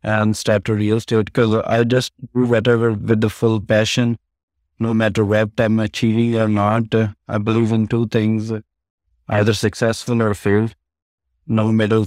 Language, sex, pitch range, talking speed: English, male, 110-125 Hz, 175 wpm